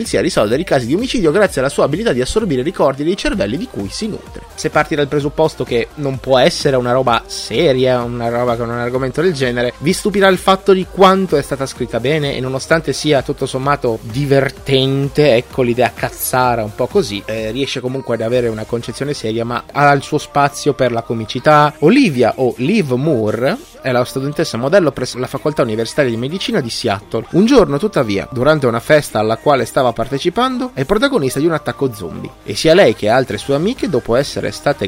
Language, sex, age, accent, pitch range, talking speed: Italian, male, 20-39, native, 120-165 Hz, 205 wpm